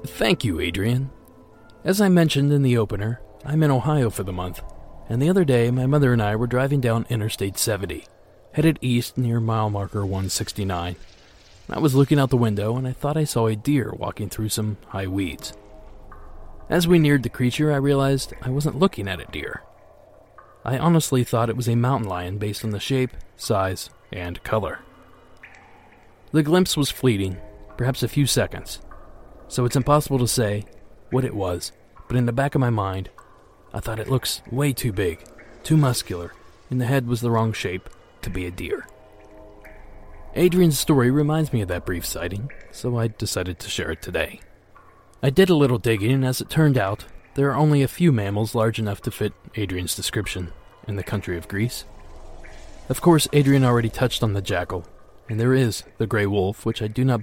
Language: English